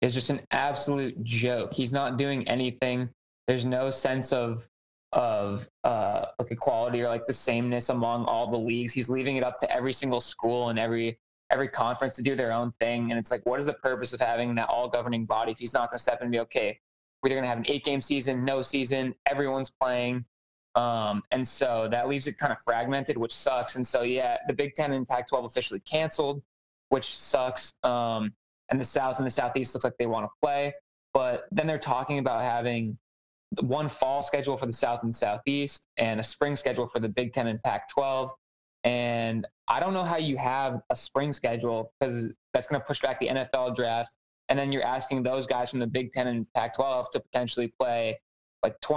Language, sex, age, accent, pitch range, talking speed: English, male, 20-39, American, 115-135 Hz, 210 wpm